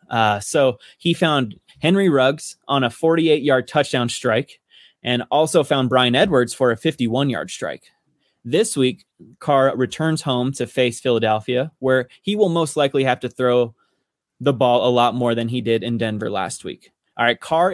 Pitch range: 125-165 Hz